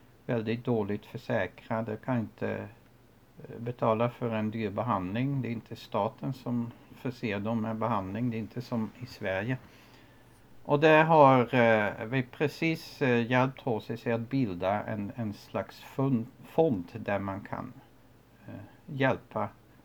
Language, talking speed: Swedish, 140 wpm